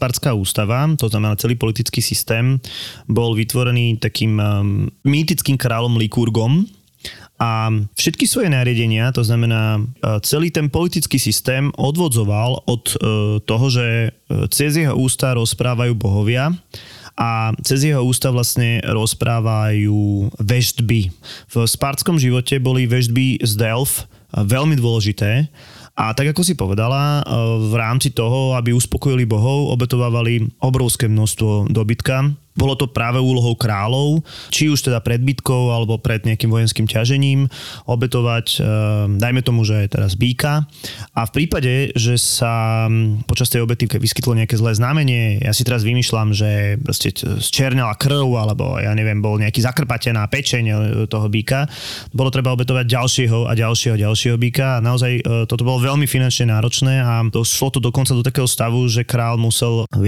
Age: 20-39